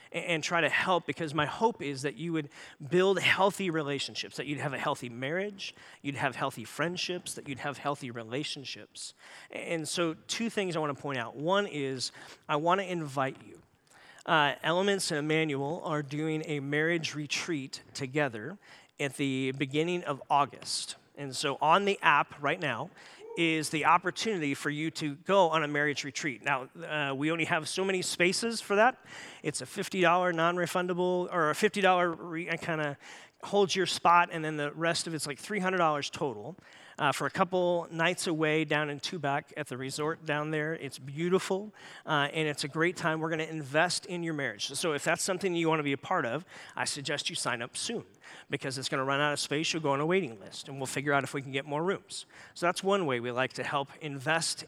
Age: 40-59